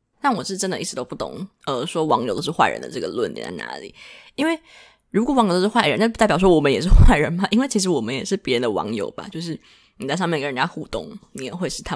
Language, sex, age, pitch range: Chinese, female, 20-39, 155-225 Hz